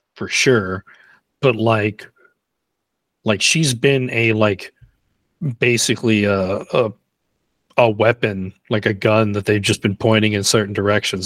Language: English